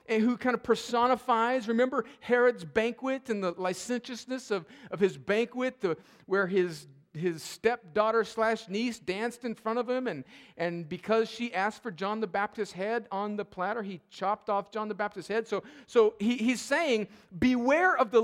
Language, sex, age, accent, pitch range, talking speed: English, male, 40-59, American, 225-310 Hz, 180 wpm